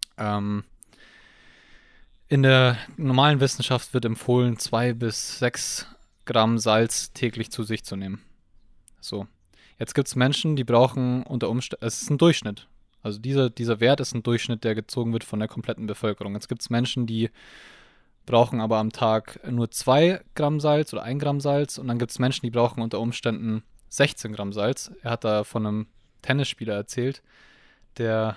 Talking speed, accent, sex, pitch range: 170 wpm, German, male, 110-130 Hz